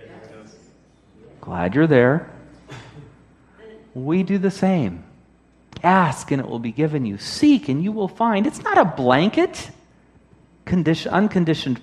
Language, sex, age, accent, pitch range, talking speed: English, male, 40-59, American, 125-200 Hz, 120 wpm